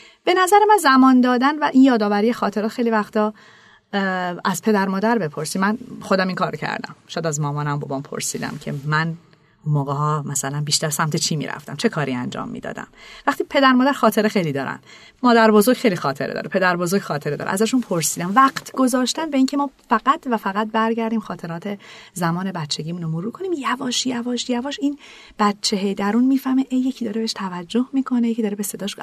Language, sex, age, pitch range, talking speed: Persian, female, 30-49, 155-230 Hz, 190 wpm